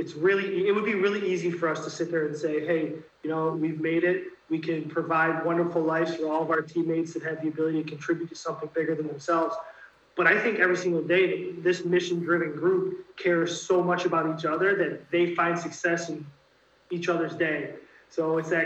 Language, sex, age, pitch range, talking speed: English, male, 20-39, 160-180 Hz, 215 wpm